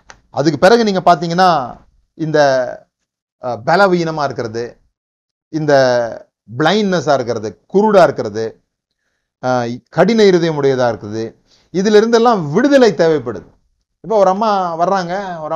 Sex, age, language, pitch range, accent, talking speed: male, 30-49, Tamil, 140-180 Hz, native, 95 wpm